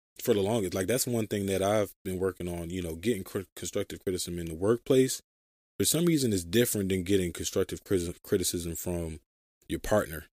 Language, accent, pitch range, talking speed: English, American, 85-105 Hz, 190 wpm